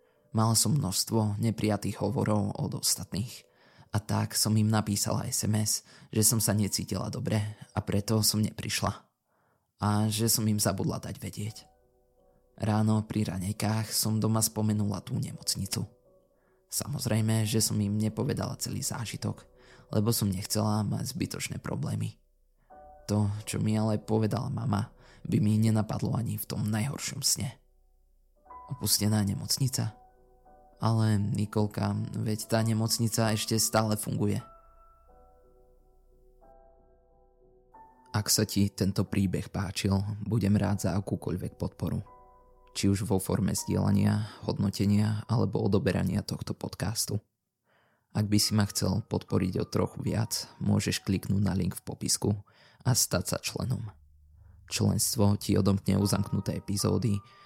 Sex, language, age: male, Slovak, 20-39